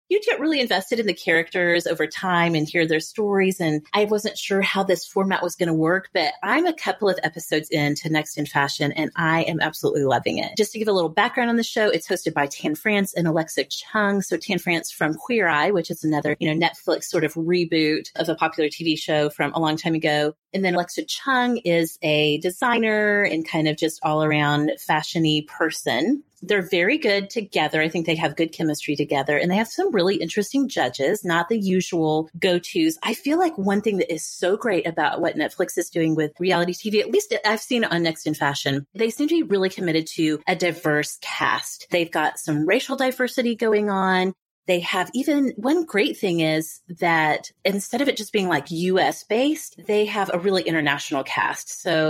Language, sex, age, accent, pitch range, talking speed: English, female, 30-49, American, 160-210 Hz, 210 wpm